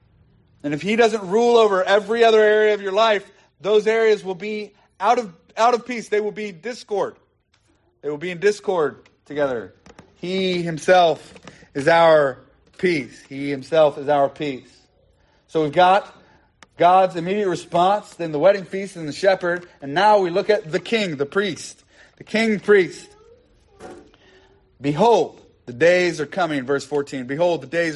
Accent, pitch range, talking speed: American, 145-200 Hz, 160 wpm